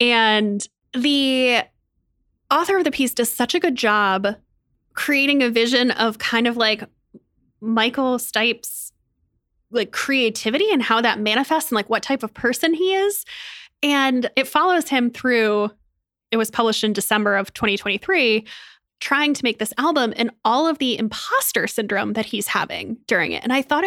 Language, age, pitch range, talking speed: English, 10-29, 220-290 Hz, 165 wpm